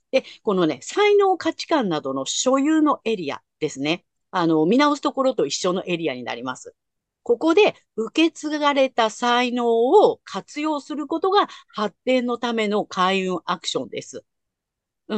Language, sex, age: Japanese, female, 50-69